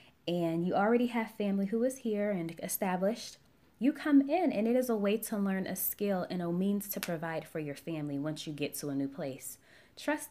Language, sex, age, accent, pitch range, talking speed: English, female, 20-39, American, 150-220 Hz, 220 wpm